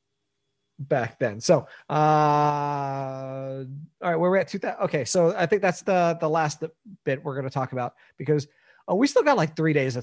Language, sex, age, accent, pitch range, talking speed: English, male, 30-49, American, 145-185 Hz, 185 wpm